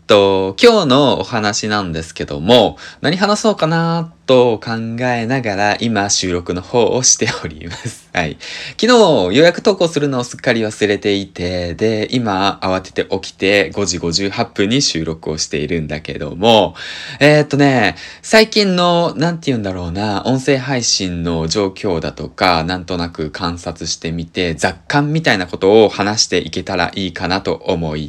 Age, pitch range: 20-39, 95-155 Hz